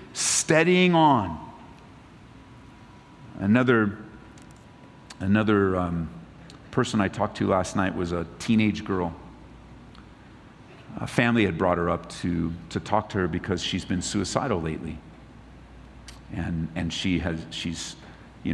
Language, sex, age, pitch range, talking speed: English, male, 50-69, 85-110 Hz, 120 wpm